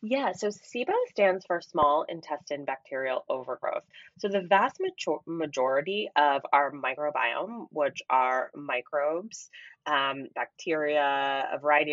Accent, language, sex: American, English, female